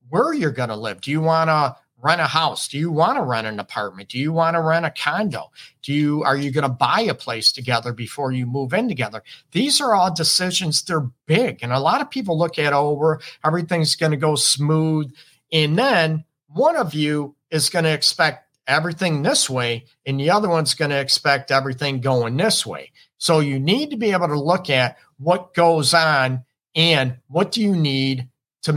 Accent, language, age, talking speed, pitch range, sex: American, English, 50-69, 200 wpm, 130-165 Hz, male